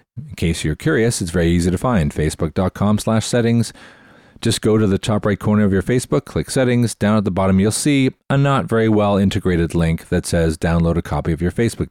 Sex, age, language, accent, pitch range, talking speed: male, 40-59, English, American, 85-115 Hz, 220 wpm